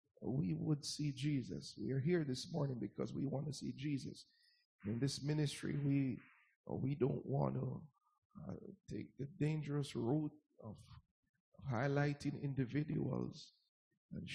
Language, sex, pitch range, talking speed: English, male, 130-155 Hz, 135 wpm